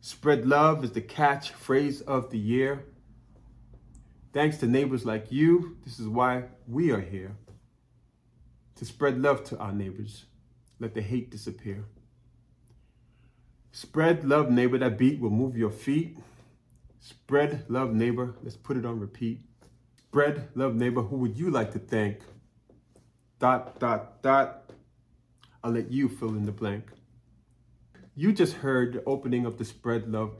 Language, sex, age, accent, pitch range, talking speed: English, male, 30-49, American, 115-135 Hz, 150 wpm